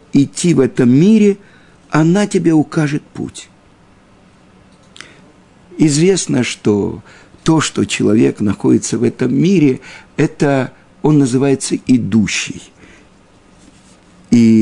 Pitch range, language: 105-155 Hz, Russian